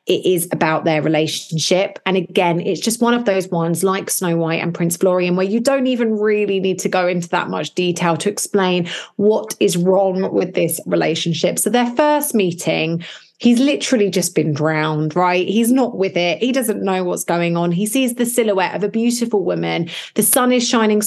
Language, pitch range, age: English, 170-215 Hz, 30-49